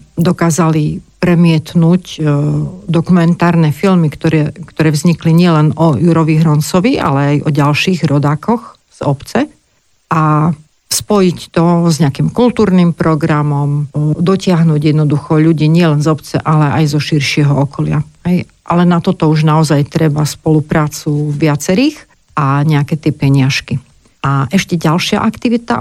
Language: Slovak